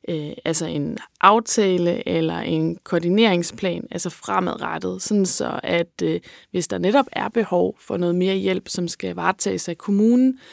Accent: native